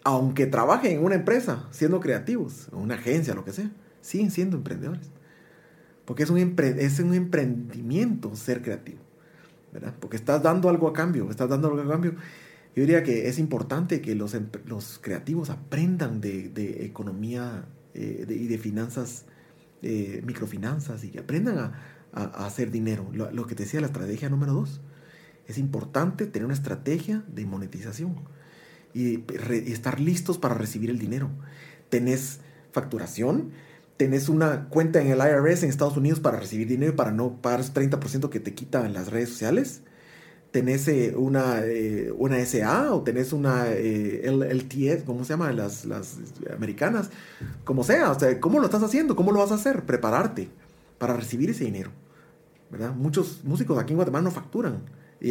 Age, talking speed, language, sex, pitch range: 30-49, 175 wpm, Spanish, male, 120-160 Hz